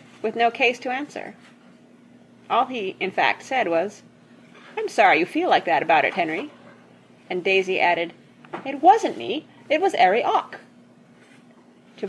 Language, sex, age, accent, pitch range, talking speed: English, female, 30-49, American, 185-275 Hz, 155 wpm